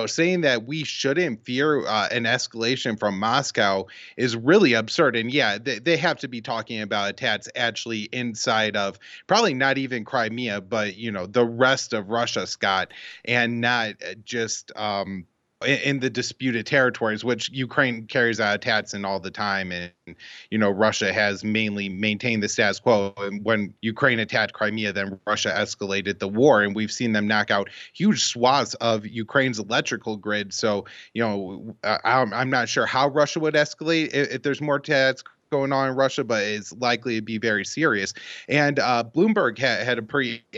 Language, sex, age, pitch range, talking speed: English, male, 20-39, 110-135 Hz, 175 wpm